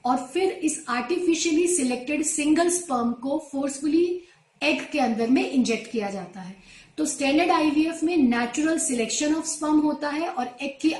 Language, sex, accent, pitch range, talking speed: Hindi, female, native, 245-305 Hz, 165 wpm